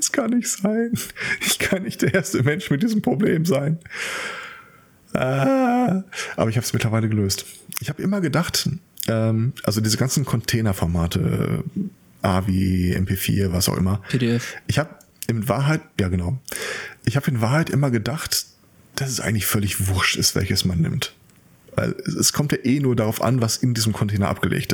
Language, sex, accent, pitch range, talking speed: German, male, German, 110-155 Hz, 160 wpm